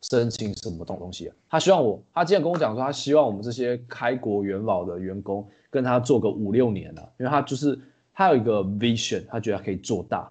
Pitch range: 100-125 Hz